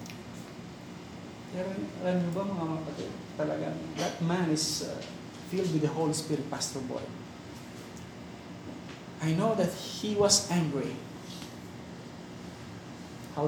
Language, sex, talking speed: Filipino, male, 105 wpm